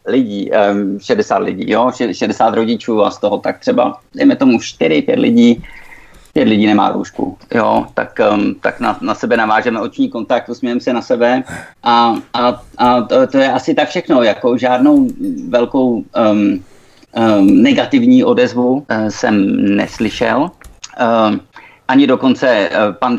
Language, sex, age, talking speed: Czech, male, 50-69, 145 wpm